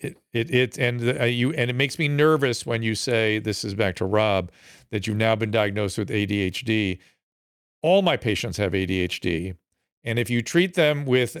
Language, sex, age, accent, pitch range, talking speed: English, male, 50-69, American, 100-135 Hz, 190 wpm